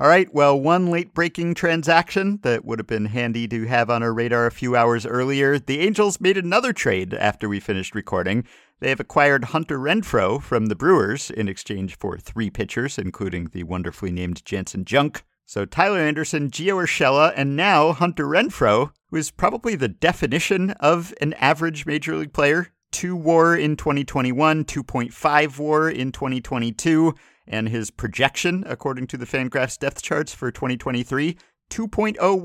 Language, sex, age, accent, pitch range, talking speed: English, male, 50-69, American, 105-160 Hz, 160 wpm